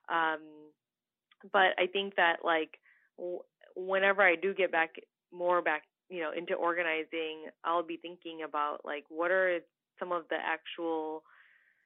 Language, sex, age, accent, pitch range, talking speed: English, female, 20-39, American, 155-190 Hz, 145 wpm